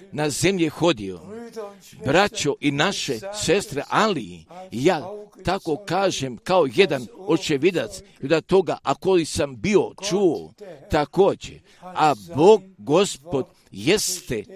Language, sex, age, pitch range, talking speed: Croatian, male, 50-69, 150-195 Hz, 105 wpm